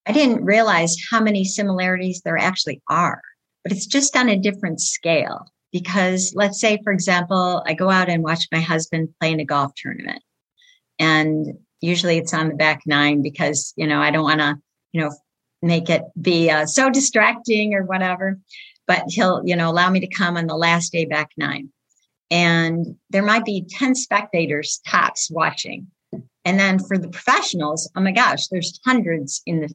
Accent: American